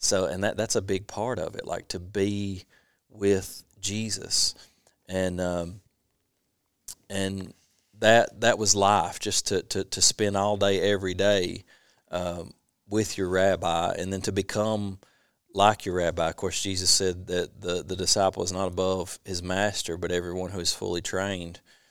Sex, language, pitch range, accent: male, English, 95-105 Hz, American